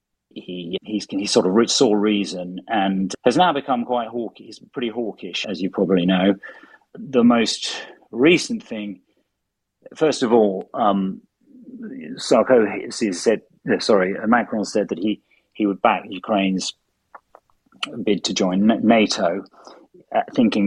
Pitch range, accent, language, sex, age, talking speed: 100-115 Hz, British, English, male, 40-59, 130 wpm